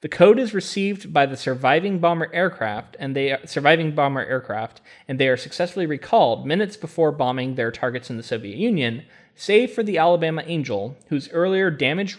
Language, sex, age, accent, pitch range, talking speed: English, male, 20-39, American, 120-155 Hz, 175 wpm